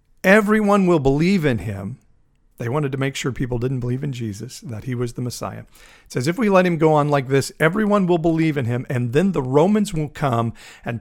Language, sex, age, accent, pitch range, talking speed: English, male, 50-69, American, 120-155 Hz, 230 wpm